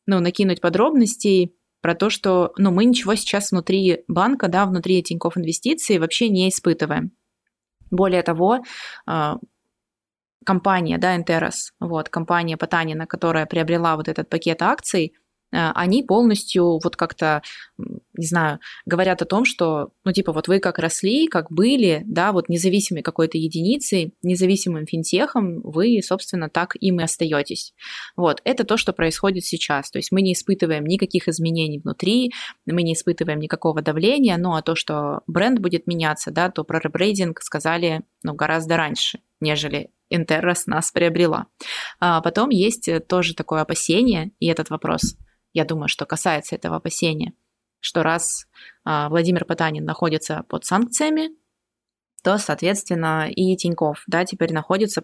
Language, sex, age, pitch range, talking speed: Russian, female, 20-39, 160-195 Hz, 140 wpm